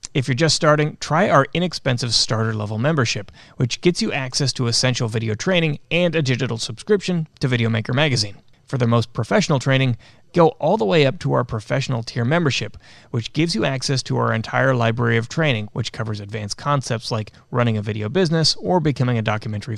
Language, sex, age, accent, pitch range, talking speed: English, male, 30-49, American, 110-140 Hz, 195 wpm